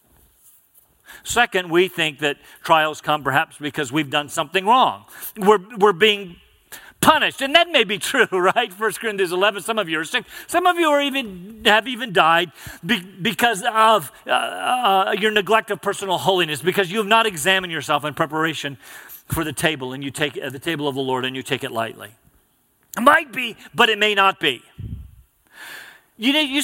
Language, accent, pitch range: English, American, 160-245 Hz